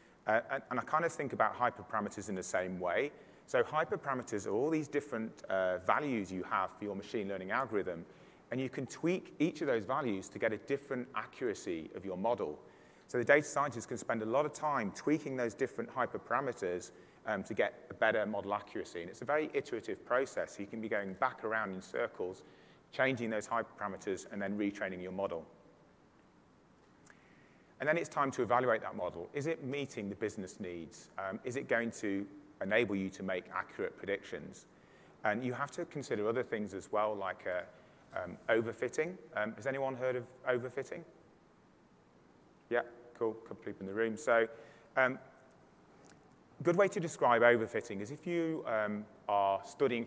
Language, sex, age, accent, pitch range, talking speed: English, male, 30-49, British, 100-130 Hz, 180 wpm